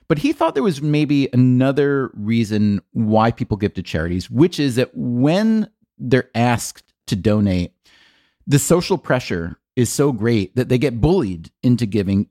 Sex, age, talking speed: male, 30-49, 160 wpm